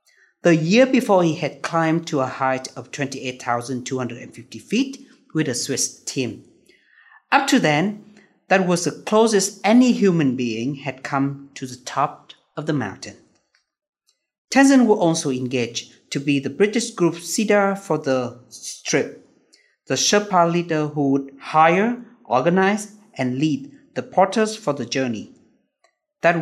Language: Vietnamese